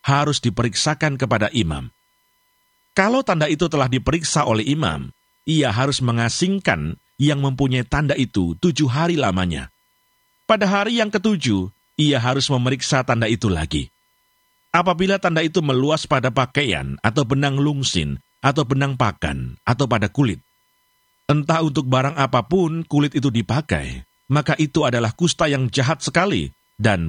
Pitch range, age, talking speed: 120-170 Hz, 50-69, 135 wpm